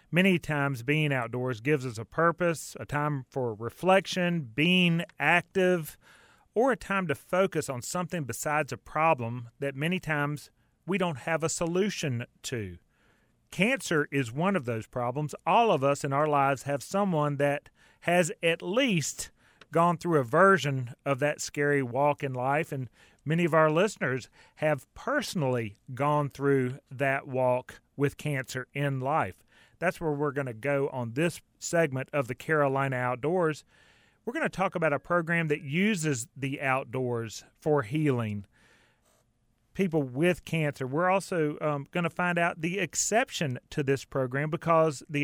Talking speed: 155 wpm